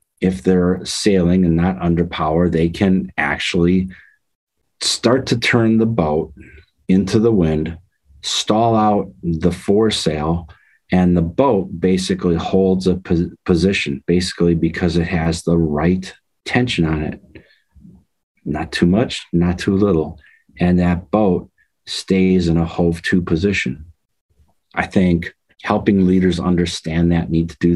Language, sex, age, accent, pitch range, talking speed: English, male, 40-59, American, 80-95 Hz, 130 wpm